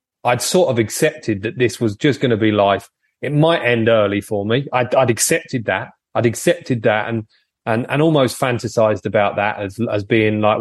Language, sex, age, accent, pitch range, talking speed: English, male, 30-49, British, 100-120 Hz, 205 wpm